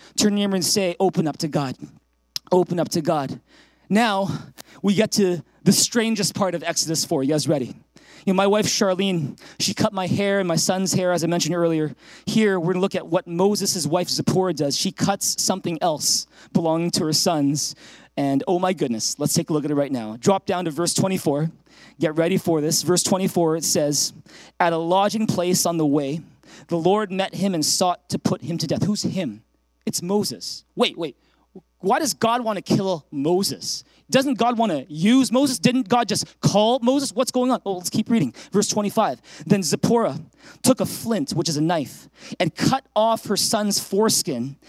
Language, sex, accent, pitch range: English, male, American, 165-215 Hz